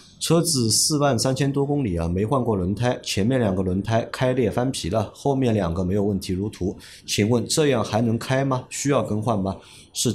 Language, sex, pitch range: Chinese, male, 95-125 Hz